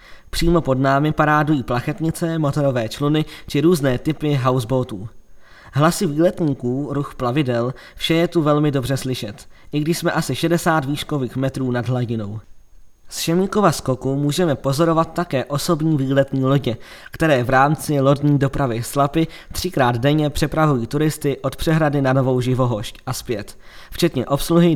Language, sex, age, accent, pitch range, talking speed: Czech, male, 20-39, native, 130-155 Hz, 140 wpm